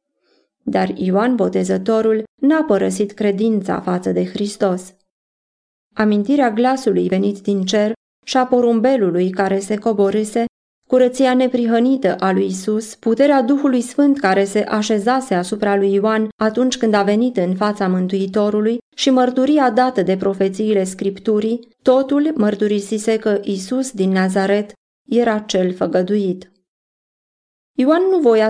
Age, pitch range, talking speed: 20-39, 195-240 Hz, 125 wpm